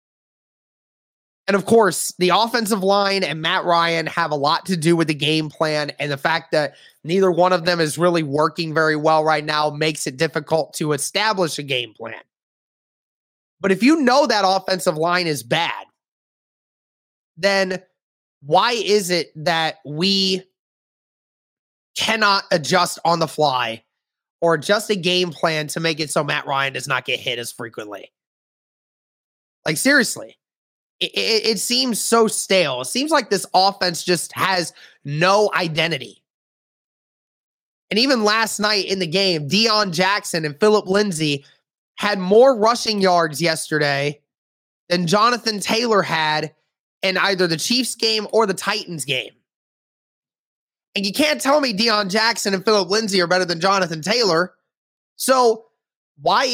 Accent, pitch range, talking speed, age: American, 160-210 Hz, 150 wpm, 30-49